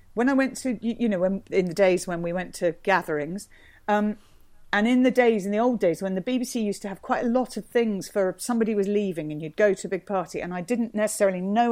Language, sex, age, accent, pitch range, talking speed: English, female, 50-69, British, 190-260 Hz, 255 wpm